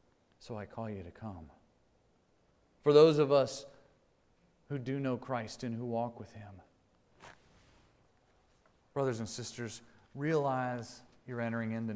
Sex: male